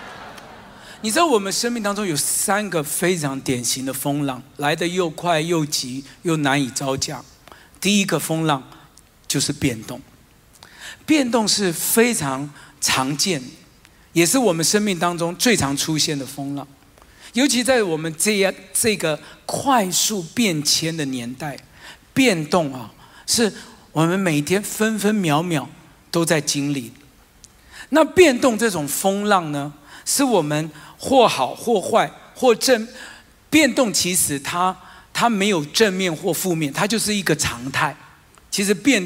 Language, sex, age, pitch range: Chinese, male, 50-69, 145-205 Hz